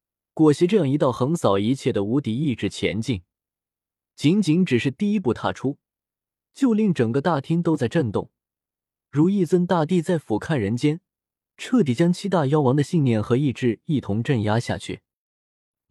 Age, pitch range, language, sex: 20-39, 110-165 Hz, Chinese, male